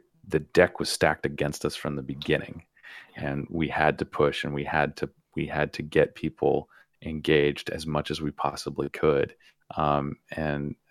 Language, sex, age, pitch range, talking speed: English, male, 30-49, 70-85 Hz, 175 wpm